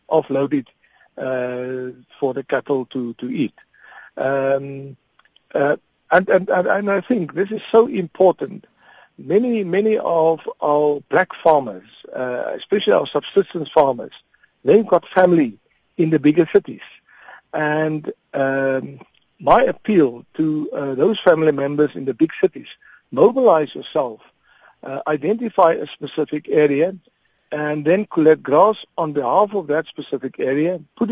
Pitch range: 140-190 Hz